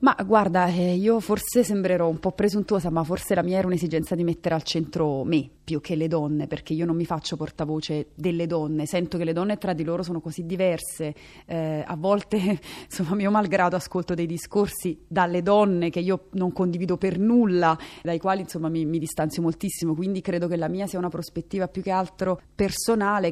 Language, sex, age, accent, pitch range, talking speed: Italian, female, 30-49, native, 160-185 Hz, 200 wpm